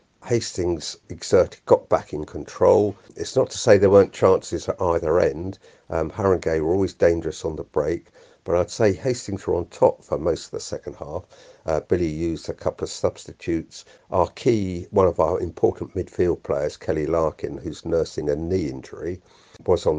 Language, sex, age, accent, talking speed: English, male, 50-69, British, 185 wpm